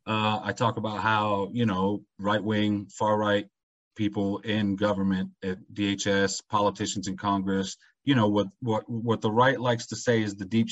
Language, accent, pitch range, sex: English, American, 100-115 Hz, male